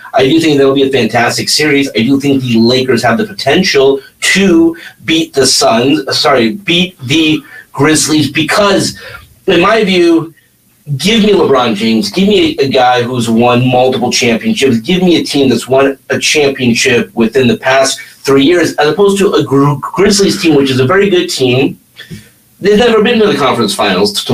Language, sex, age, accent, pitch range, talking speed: English, male, 40-59, American, 125-175 Hz, 190 wpm